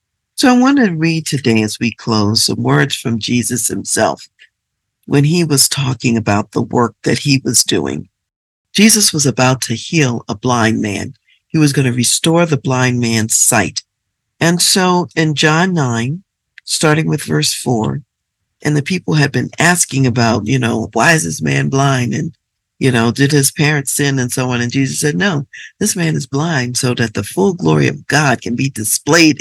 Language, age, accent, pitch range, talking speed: English, 50-69, American, 115-160 Hz, 190 wpm